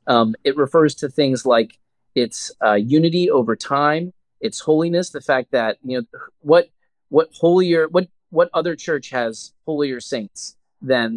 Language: English